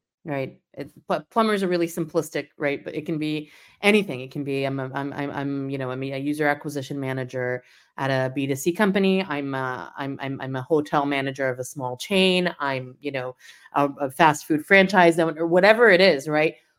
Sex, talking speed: female, 200 wpm